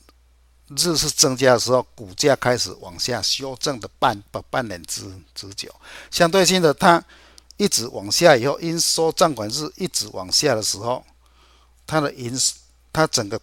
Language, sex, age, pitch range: Chinese, male, 50-69, 95-150 Hz